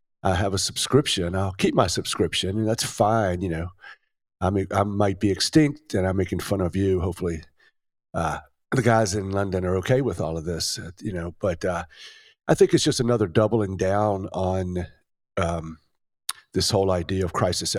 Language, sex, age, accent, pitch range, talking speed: English, male, 50-69, American, 90-110 Hz, 190 wpm